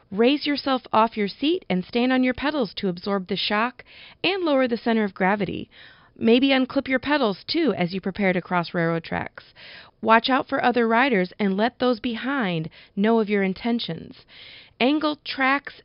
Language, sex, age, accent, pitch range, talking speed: English, female, 40-59, American, 190-260 Hz, 180 wpm